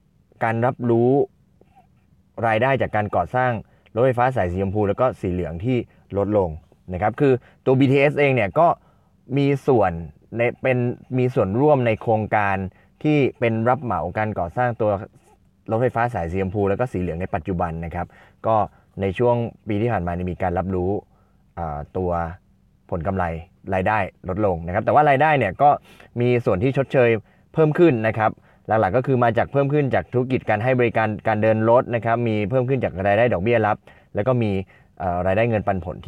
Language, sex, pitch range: Thai, male, 95-120 Hz